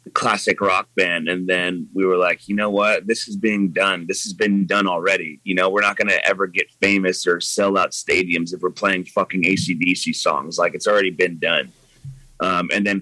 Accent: American